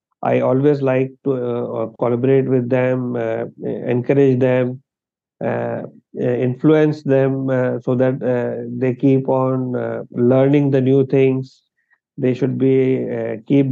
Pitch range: 120-135 Hz